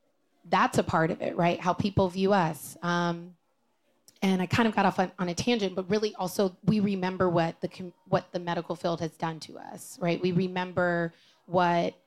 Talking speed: 200 wpm